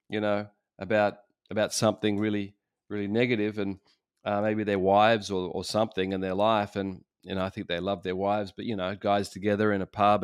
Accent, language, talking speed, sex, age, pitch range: Australian, English, 215 wpm, male, 30-49, 105-125 Hz